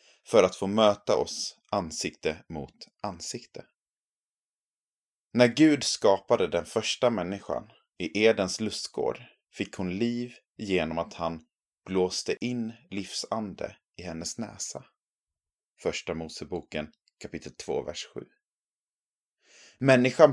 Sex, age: male, 30-49